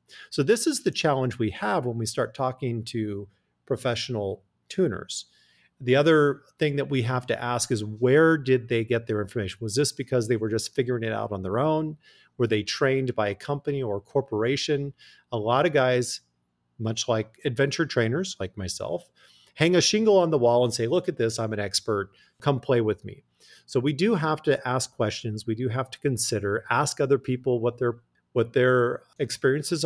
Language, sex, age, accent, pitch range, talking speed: English, male, 40-59, American, 110-135 Hz, 195 wpm